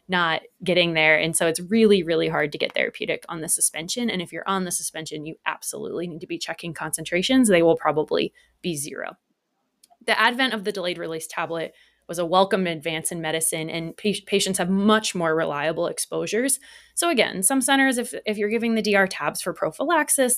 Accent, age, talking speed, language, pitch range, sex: American, 20-39, 195 wpm, English, 170-215 Hz, female